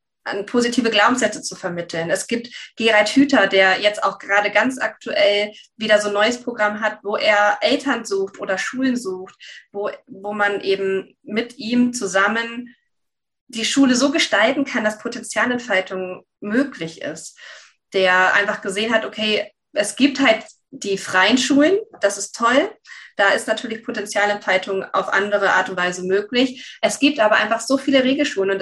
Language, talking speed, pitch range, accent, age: German, 160 wpm, 205-250 Hz, German, 20-39